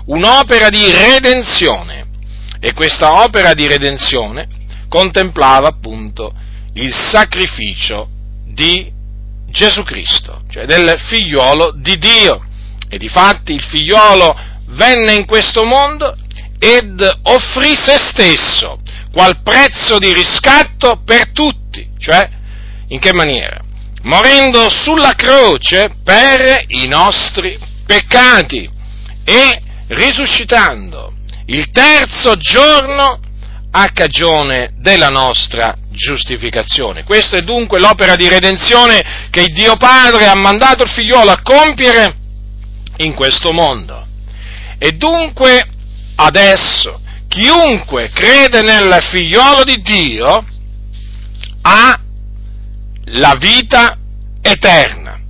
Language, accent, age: Italian, native, 40-59